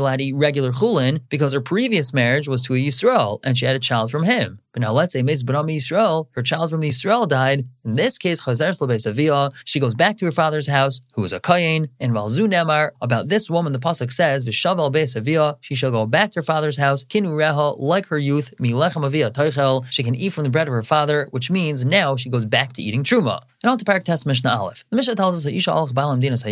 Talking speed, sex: 215 wpm, male